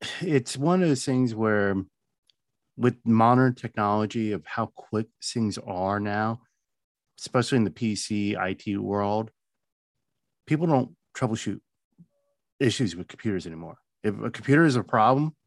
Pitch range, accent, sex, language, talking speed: 100-130 Hz, American, male, English, 130 wpm